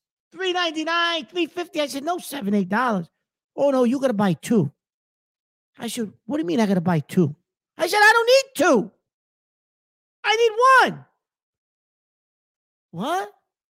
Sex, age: male, 50-69